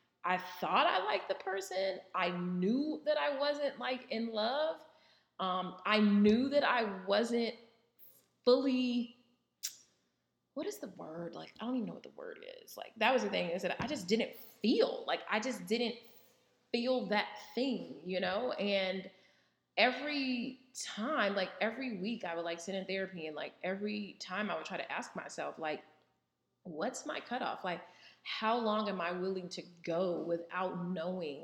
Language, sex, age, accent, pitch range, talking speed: English, female, 20-39, American, 185-245 Hz, 170 wpm